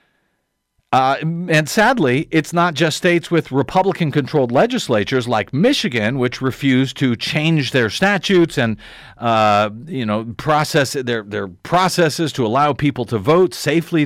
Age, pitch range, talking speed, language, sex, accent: 50-69, 135-180 Hz, 135 wpm, English, male, American